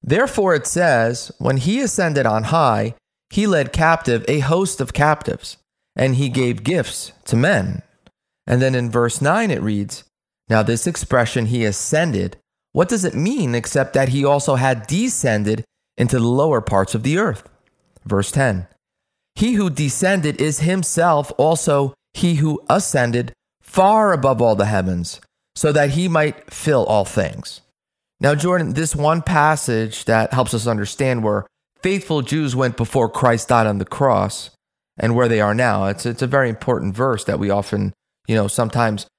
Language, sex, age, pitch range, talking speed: English, male, 30-49, 110-150 Hz, 165 wpm